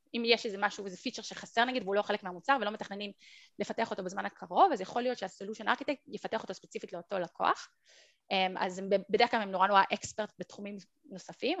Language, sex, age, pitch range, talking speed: Hebrew, female, 20-39, 190-230 Hz, 190 wpm